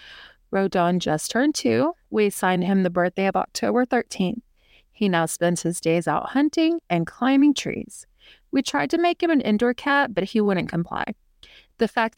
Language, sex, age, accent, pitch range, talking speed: English, female, 30-49, American, 180-230 Hz, 175 wpm